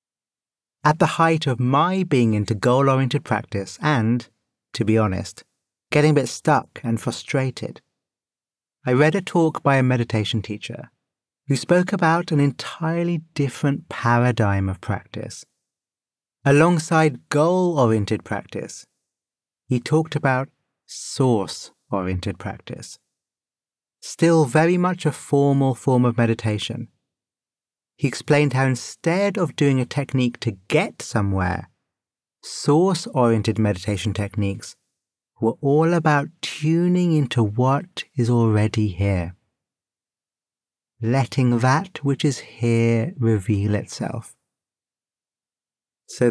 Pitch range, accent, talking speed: 110-150 Hz, British, 110 wpm